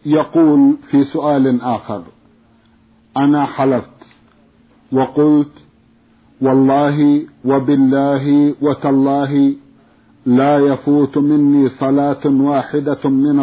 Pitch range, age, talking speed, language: 135-150 Hz, 50-69, 70 wpm, Arabic